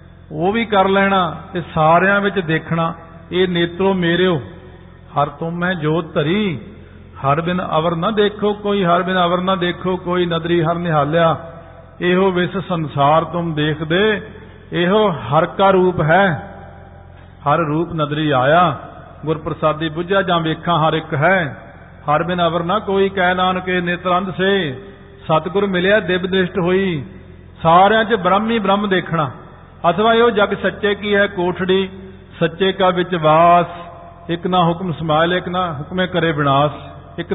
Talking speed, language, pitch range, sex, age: 150 wpm, Punjabi, 155-195 Hz, male, 50-69